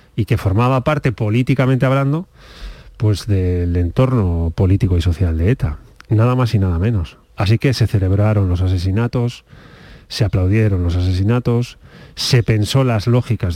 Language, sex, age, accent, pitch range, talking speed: Spanish, male, 30-49, Spanish, 100-130 Hz, 145 wpm